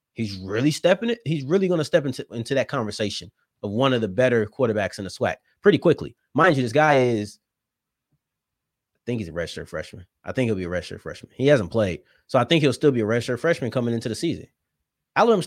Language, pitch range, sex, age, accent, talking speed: English, 115-185 Hz, male, 30-49, American, 230 wpm